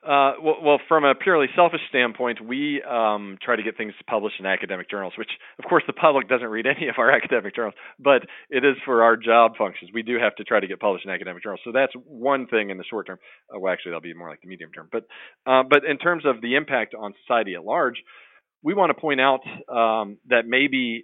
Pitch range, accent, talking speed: 105-140 Hz, American, 240 wpm